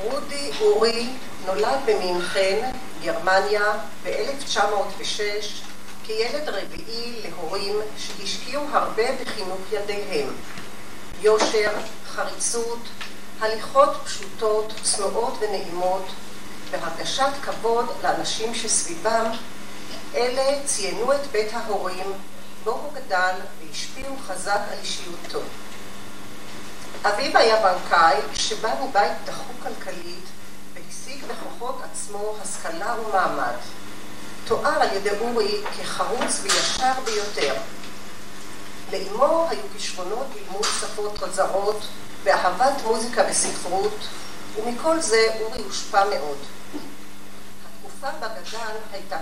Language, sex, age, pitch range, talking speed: English, female, 40-59, 185-235 Hz, 85 wpm